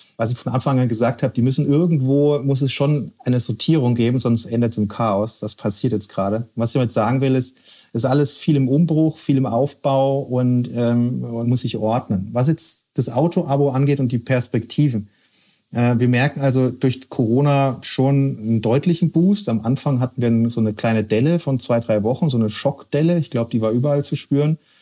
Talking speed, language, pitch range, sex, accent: 210 wpm, German, 115-140 Hz, male, German